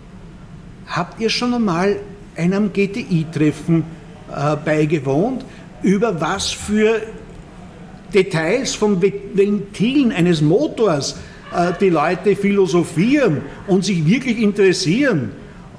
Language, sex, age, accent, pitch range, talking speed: German, male, 60-79, German, 170-200 Hz, 90 wpm